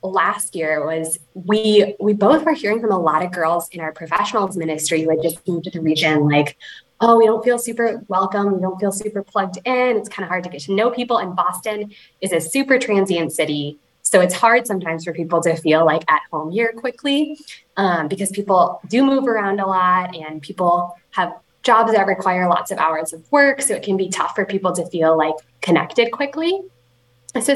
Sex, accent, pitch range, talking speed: female, American, 170-225 Hz, 215 wpm